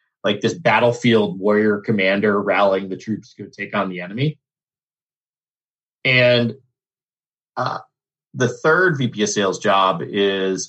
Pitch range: 105-155 Hz